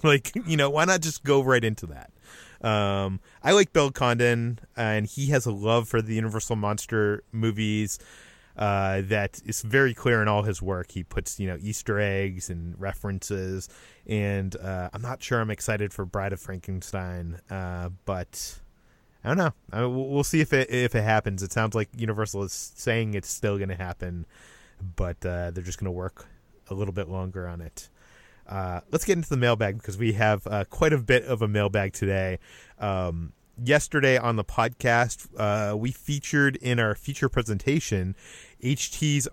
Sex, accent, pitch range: male, American, 100-125 Hz